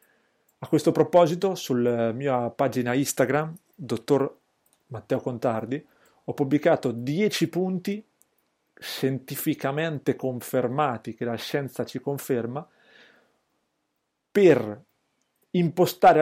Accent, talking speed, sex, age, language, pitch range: native, 85 wpm, male, 40-59, Italian, 125-160 Hz